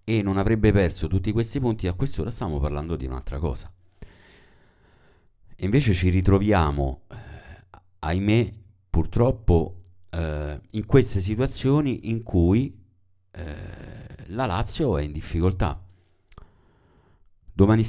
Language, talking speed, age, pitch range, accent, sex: Italian, 115 wpm, 50-69, 75-100 Hz, native, male